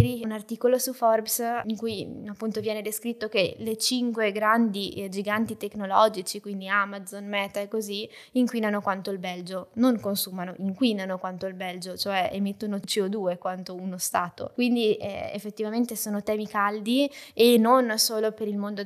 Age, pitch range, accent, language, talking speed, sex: 20-39, 200-240 Hz, native, Italian, 155 wpm, female